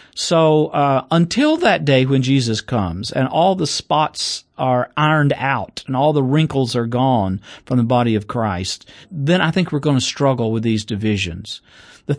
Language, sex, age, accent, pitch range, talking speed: English, male, 50-69, American, 125-160 Hz, 180 wpm